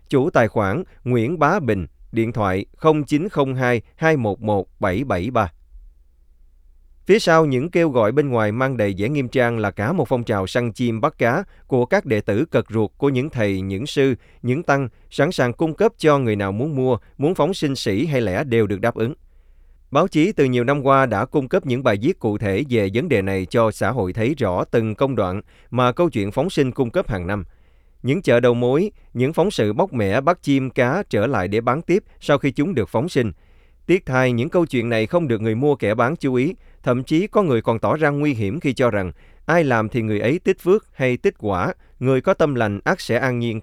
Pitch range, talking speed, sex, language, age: 105-145 Hz, 225 wpm, male, Vietnamese, 20-39